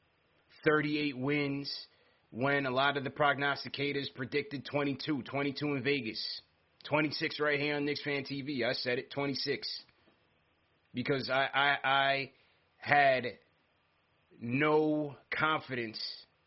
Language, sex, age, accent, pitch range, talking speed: English, male, 30-49, American, 120-140 Hz, 110 wpm